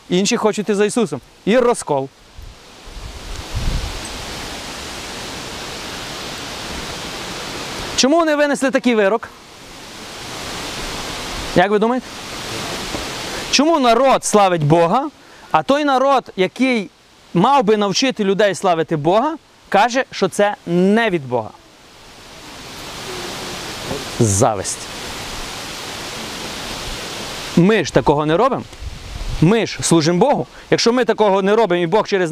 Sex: male